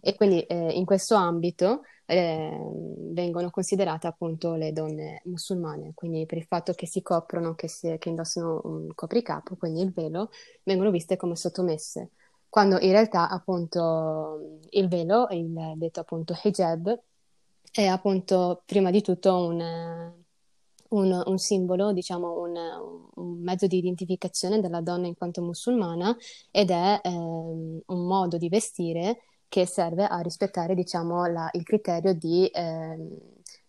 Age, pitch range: 20-39, 170-190 Hz